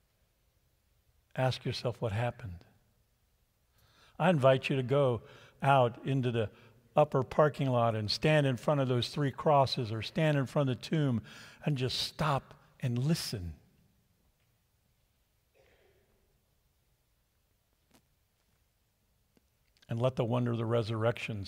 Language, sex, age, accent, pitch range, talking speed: English, male, 50-69, American, 105-130 Hz, 115 wpm